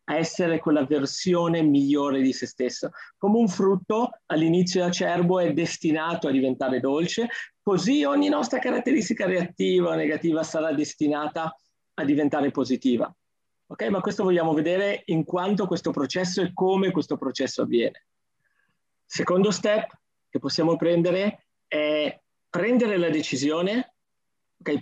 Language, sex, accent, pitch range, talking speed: Italian, male, native, 150-195 Hz, 130 wpm